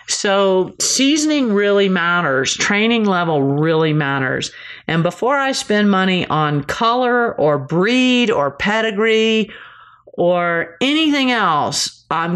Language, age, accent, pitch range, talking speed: English, 50-69, American, 150-200 Hz, 110 wpm